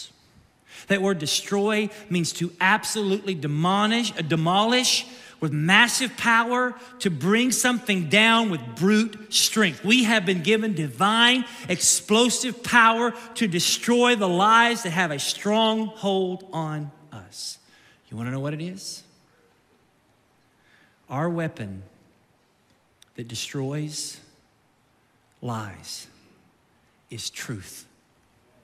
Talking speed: 105 wpm